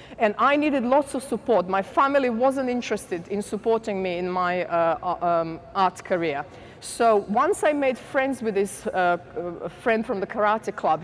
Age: 40-59